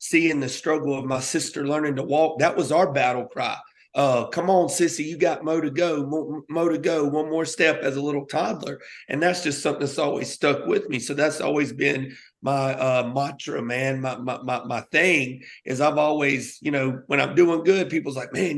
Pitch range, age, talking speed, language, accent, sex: 135-160 Hz, 40-59, 220 wpm, English, American, male